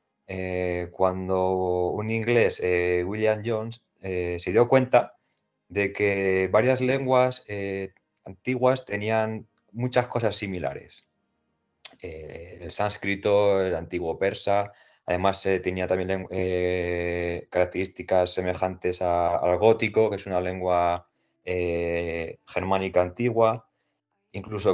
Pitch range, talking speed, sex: 90-115 Hz, 105 wpm, male